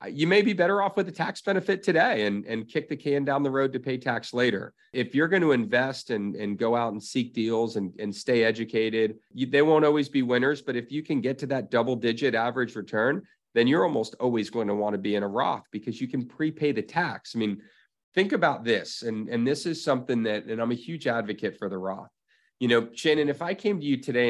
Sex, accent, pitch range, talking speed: male, American, 115-150 Hz, 245 wpm